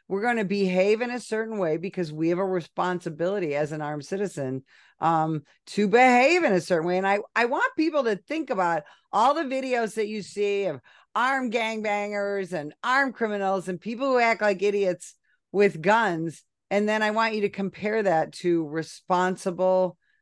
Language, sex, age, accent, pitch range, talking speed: English, female, 50-69, American, 165-215 Hz, 185 wpm